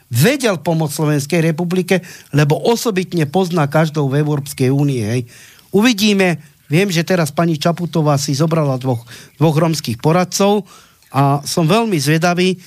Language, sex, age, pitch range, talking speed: Slovak, male, 40-59, 135-175 Hz, 130 wpm